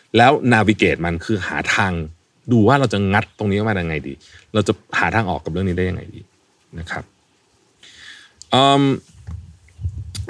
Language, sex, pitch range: Thai, male, 90-115 Hz